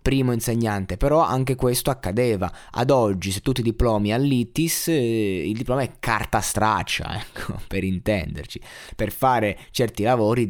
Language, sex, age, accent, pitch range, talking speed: Italian, male, 20-39, native, 100-125 Hz, 145 wpm